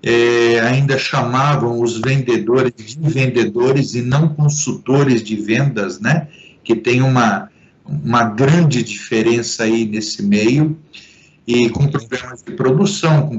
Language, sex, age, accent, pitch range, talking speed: Portuguese, male, 50-69, Brazilian, 115-165 Hz, 120 wpm